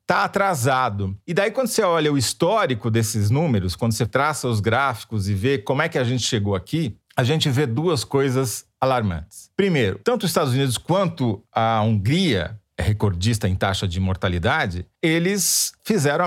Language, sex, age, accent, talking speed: Portuguese, male, 40-59, Brazilian, 170 wpm